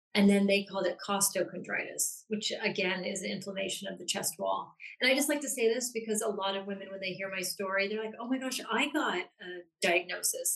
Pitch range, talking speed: 190-245 Hz, 225 wpm